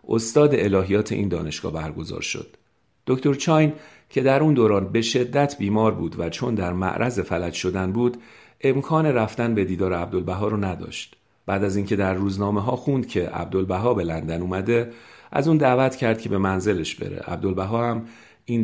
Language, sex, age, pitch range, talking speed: Persian, male, 50-69, 95-120 Hz, 170 wpm